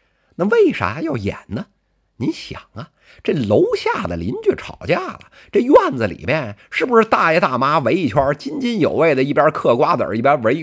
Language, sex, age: Chinese, male, 50-69